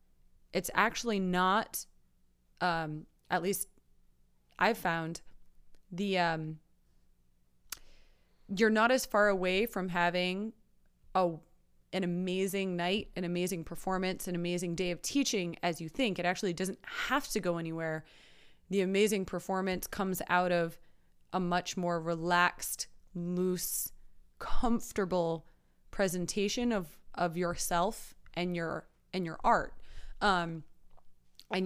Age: 20-39